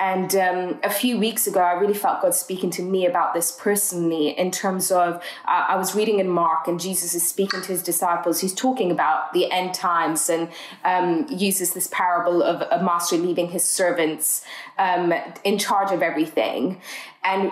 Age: 20-39